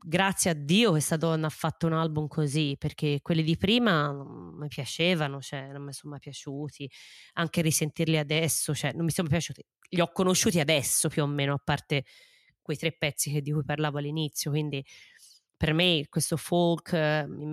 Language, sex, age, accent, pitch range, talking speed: Italian, female, 20-39, native, 145-175 Hz, 185 wpm